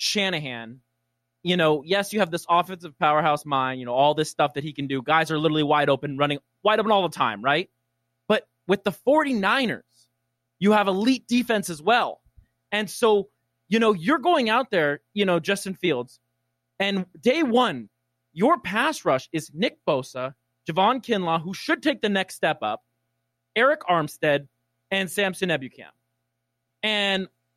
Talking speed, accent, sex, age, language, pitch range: 170 wpm, American, male, 20-39, English, 135-210 Hz